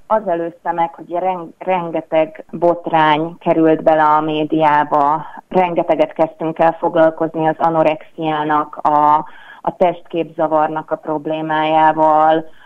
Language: Hungarian